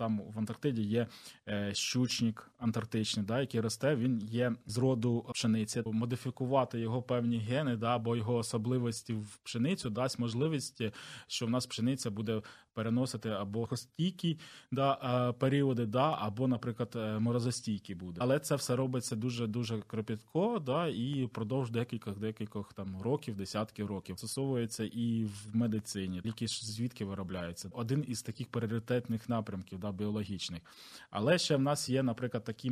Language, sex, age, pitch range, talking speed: Ukrainian, male, 20-39, 110-130 Hz, 140 wpm